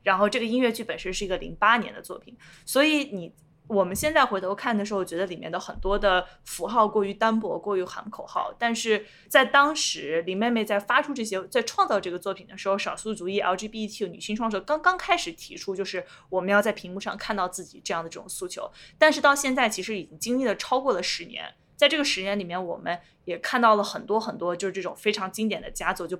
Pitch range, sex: 190-250 Hz, female